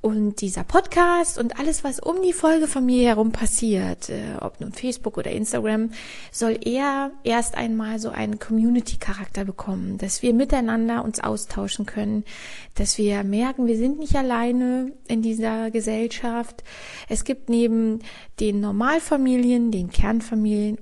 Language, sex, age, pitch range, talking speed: German, female, 20-39, 210-250 Hz, 135 wpm